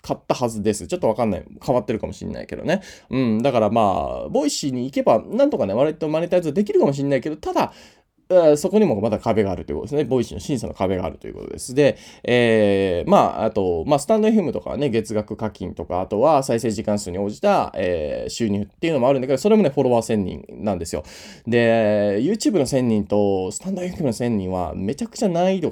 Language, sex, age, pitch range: Japanese, male, 20-39, 110-180 Hz